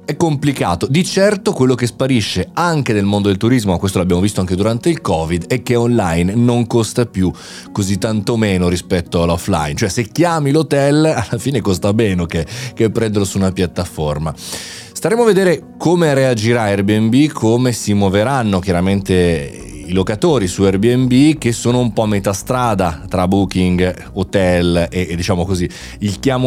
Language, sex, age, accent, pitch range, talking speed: Italian, male, 30-49, native, 90-120 Hz, 170 wpm